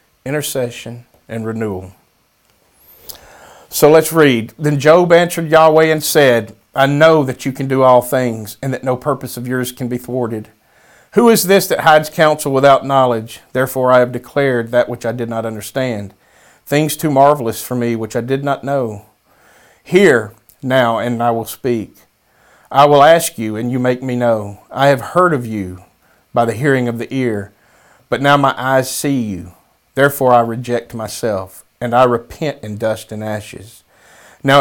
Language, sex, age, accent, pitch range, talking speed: English, male, 40-59, American, 115-140 Hz, 175 wpm